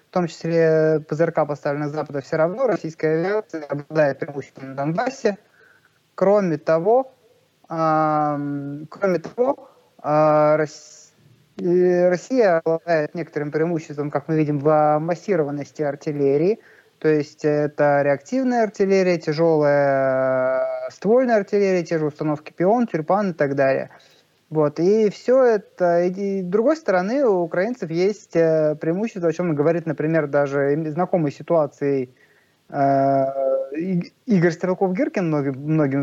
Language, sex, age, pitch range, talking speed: Russian, male, 20-39, 150-185 Hz, 125 wpm